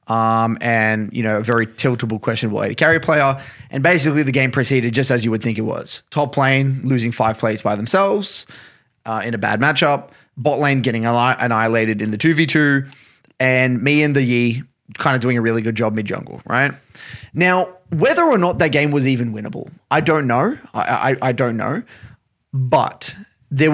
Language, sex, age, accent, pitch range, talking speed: English, male, 20-39, Australian, 125-170 Hz, 190 wpm